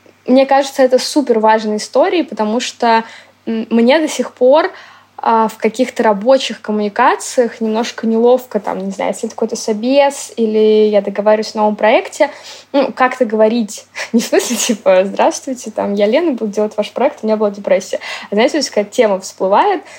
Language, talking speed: Russian, 165 wpm